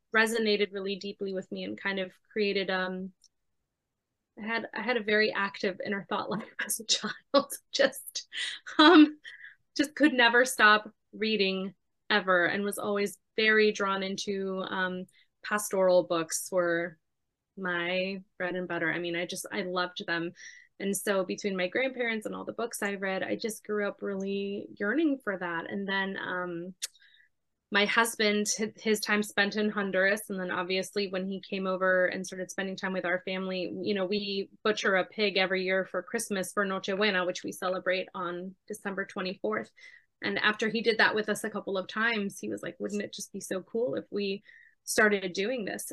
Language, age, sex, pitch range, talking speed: English, 20-39, female, 185-210 Hz, 180 wpm